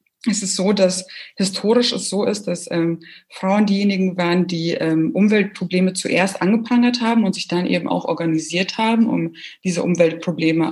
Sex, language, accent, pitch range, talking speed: female, German, German, 165-205 Hz, 160 wpm